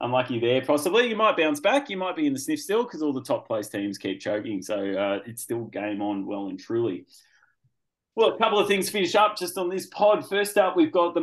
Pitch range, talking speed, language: 115-175 Hz, 255 wpm, English